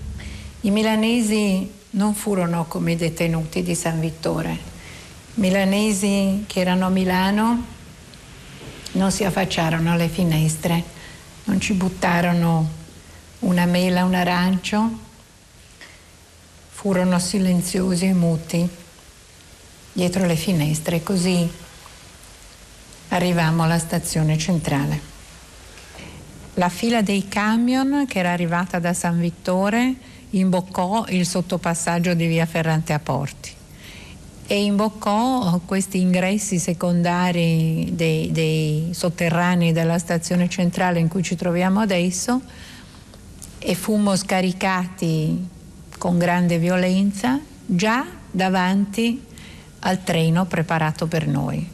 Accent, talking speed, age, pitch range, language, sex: native, 100 wpm, 60-79, 160-185 Hz, Italian, female